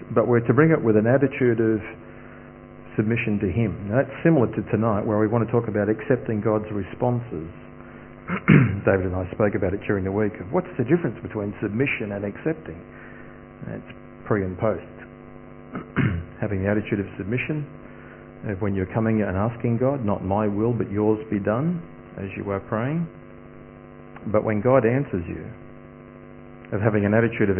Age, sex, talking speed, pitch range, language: 50-69, male, 170 wpm, 100-120 Hz, English